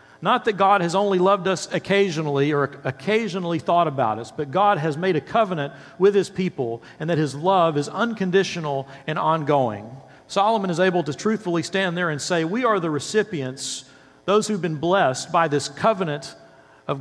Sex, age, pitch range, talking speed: male, 50-69, 150-200 Hz, 180 wpm